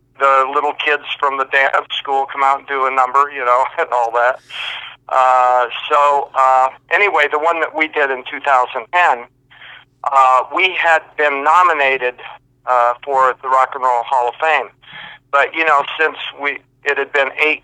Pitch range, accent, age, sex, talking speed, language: 125-150 Hz, American, 50-69, male, 175 wpm, English